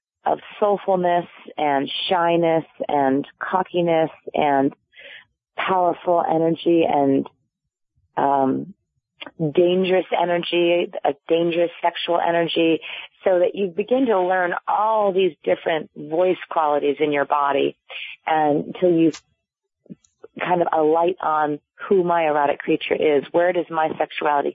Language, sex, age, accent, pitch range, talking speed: English, female, 40-59, American, 160-190 Hz, 115 wpm